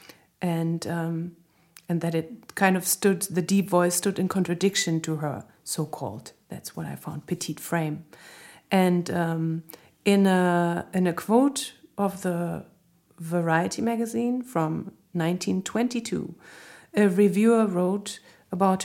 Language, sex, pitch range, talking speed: English, female, 170-205 Hz, 125 wpm